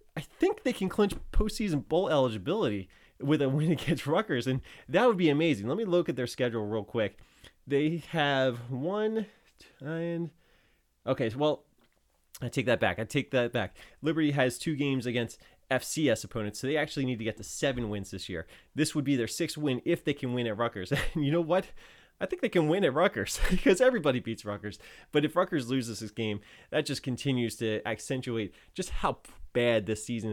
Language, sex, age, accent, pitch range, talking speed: English, male, 30-49, American, 110-150 Hz, 195 wpm